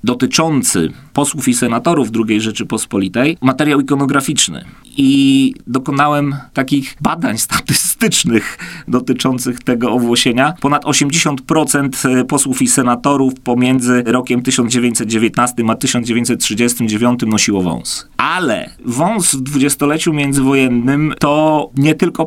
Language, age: Polish, 30-49